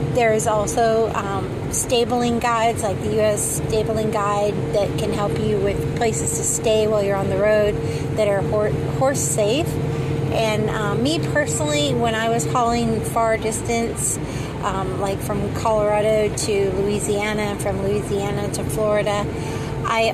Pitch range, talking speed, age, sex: 150-220 Hz, 145 wpm, 30-49, female